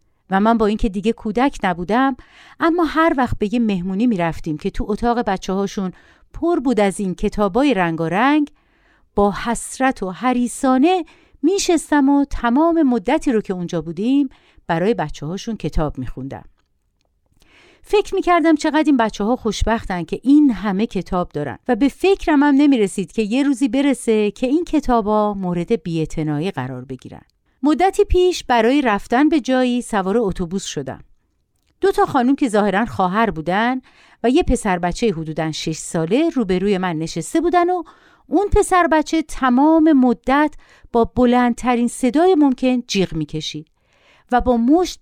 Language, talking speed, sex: Persian, 155 wpm, female